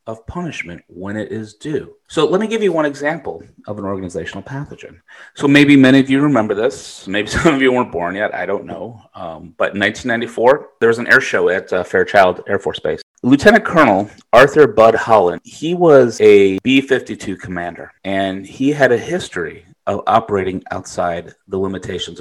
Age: 30-49